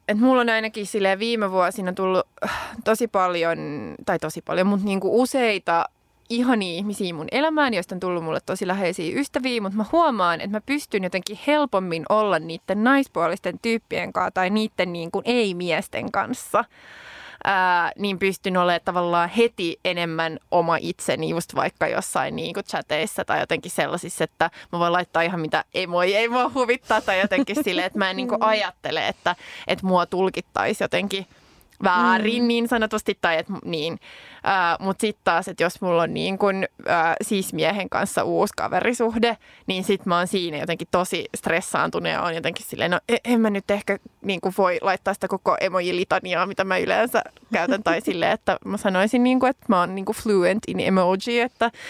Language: Finnish